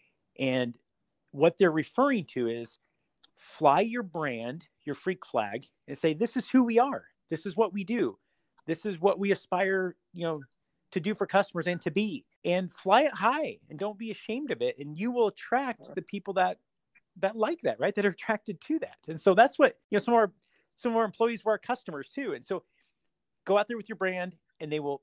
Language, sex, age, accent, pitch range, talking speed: English, male, 40-59, American, 155-210 Hz, 220 wpm